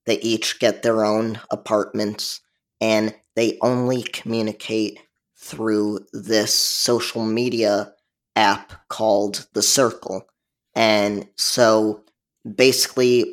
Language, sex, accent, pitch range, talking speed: English, male, American, 105-120 Hz, 95 wpm